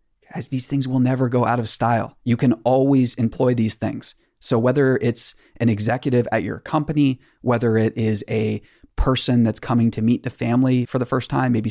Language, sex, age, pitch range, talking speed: English, male, 30-49, 110-130 Hz, 200 wpm